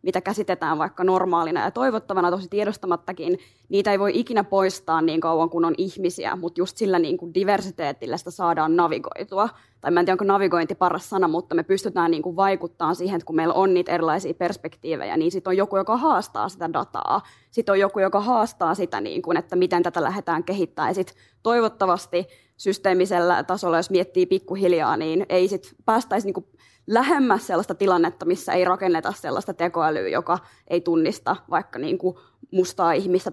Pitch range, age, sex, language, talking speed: 170-190 Hz, 20-39, female, Finnish, 165 wpm